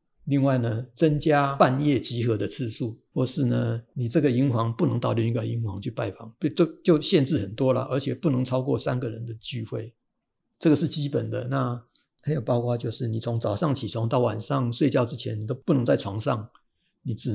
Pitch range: 115-145 Hz